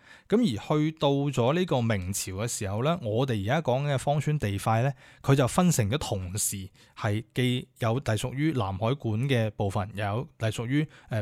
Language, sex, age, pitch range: Chinese, male, 20-39, 110-145 Hz